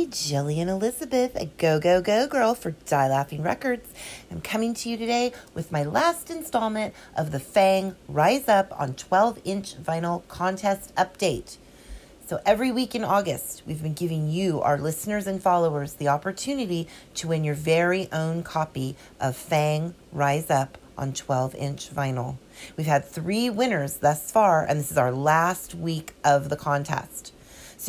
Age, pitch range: 40-59, 145-205 Hz